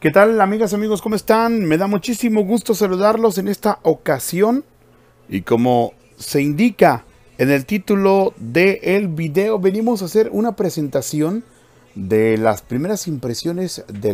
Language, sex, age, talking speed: Spanish, male, 40-59, 145 wpm